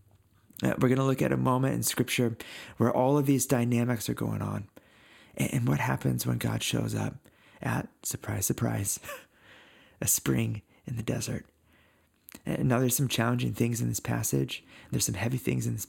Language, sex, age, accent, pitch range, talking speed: English, male, 30-49, American, 80-120 Hz, 180 wpm